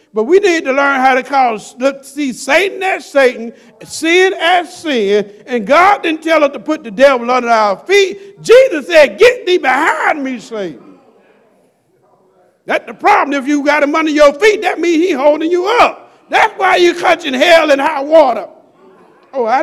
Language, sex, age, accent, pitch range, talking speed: English, male, 50-69, American, 235-330 Hz, 185 wpm